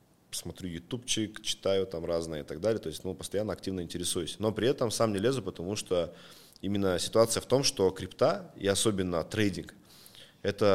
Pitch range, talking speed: 85-105 Hz, 180 wpm